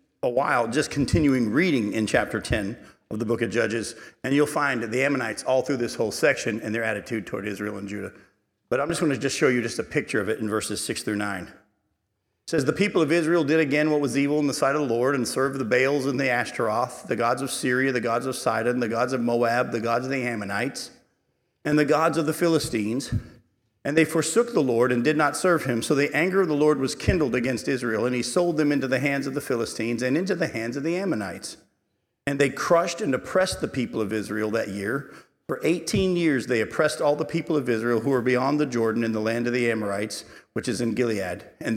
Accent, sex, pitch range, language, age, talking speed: American, male, 115-155 Hz, English, 50-69, 245 wpm